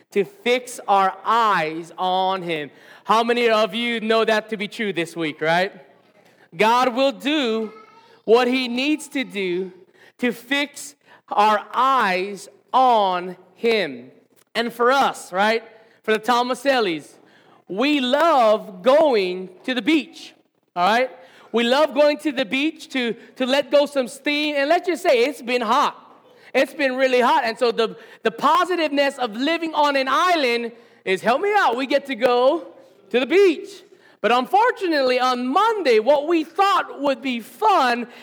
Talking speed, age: 160 wpm, 30-49